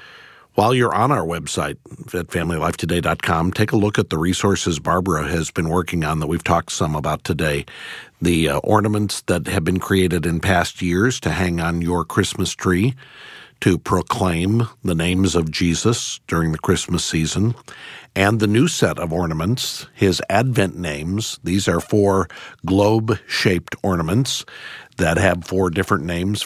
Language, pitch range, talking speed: English, 85-105 Hz, 155 wpm